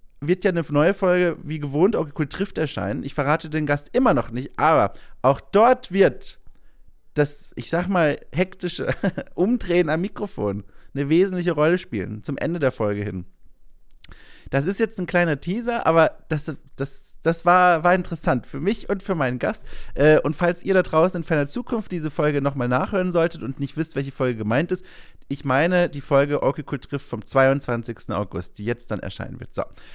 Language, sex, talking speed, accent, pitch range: German, male, 190 wpm, German, 140-185 Hz